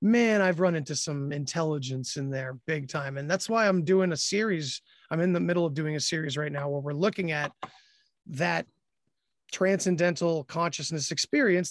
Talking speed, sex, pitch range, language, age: 180 wpm, male, 150-190 Hz, English, 30-49